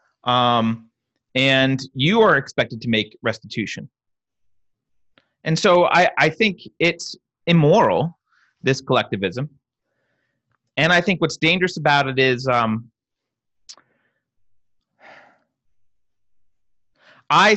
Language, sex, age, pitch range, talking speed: English, male, 30-49, 115-145 Hz, 90 wpm